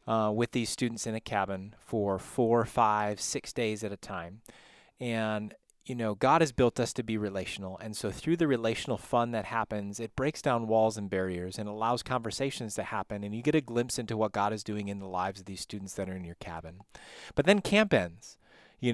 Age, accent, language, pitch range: 30-49, American, English, 110-125 Hz